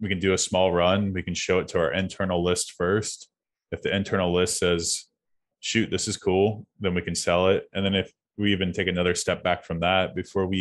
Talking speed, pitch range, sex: 240 wpm, 85-95 Hz, male